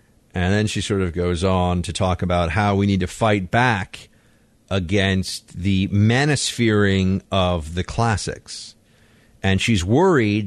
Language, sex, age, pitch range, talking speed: English, male, 40-59, 90-115 Hz, 145 wpm